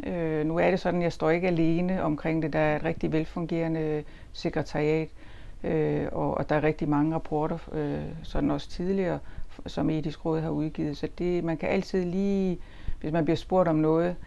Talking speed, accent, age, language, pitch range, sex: 175 wpm, native, 60-79, Danish, 155-175 Hz, female